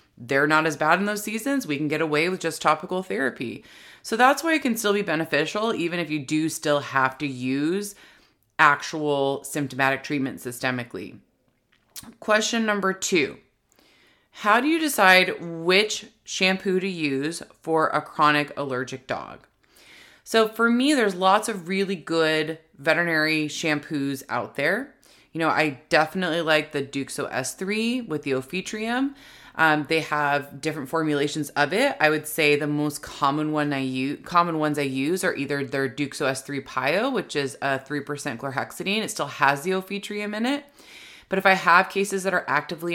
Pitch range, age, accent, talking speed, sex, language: 145-190 Hz, 20-39, American, 165 wpm, female, English